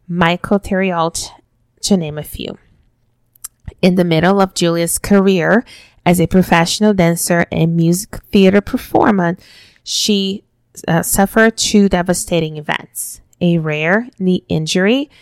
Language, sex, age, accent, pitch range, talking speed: English, female, 20-39, American, 165-190 Hz, 120 wpm